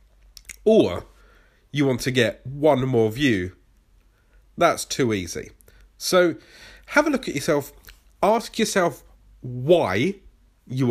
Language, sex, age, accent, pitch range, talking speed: English, male, 40-59, British, 110-165 Hz, 115 wpm